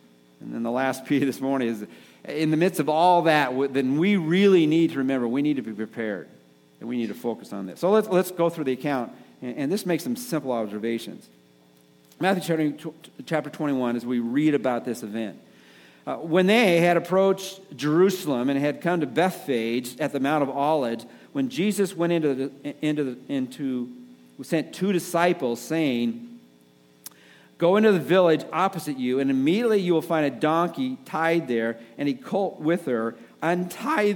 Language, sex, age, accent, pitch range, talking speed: English, male, 50-69, American, 120-155 Hz, 185 wpm